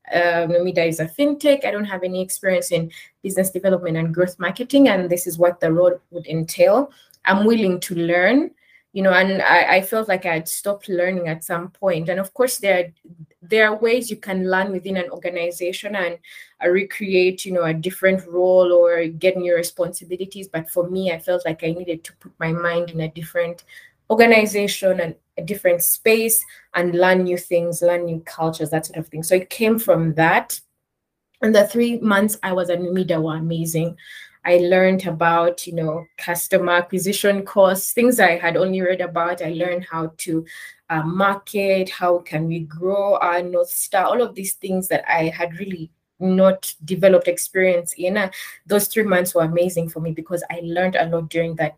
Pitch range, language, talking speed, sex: 170-195 Hz, English, 195 wpm, female